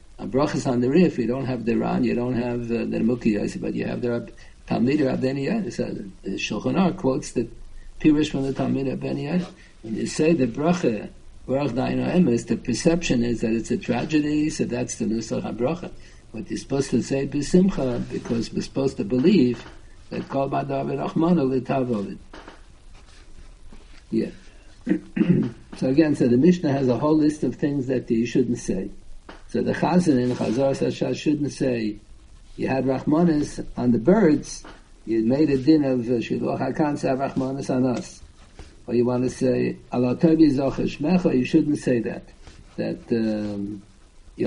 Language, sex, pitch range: English, male, 120-150 Hz